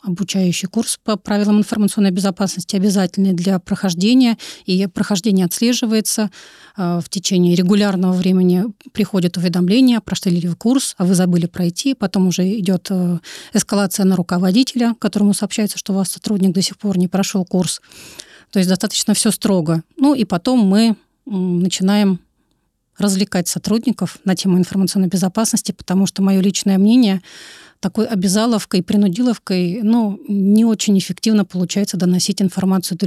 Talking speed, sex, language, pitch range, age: 140 wpm, female, Russian, 185-210 Hz, 30-49